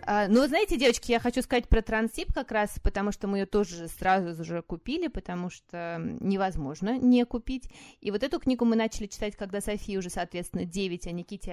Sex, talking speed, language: female, 195 wpm, Russian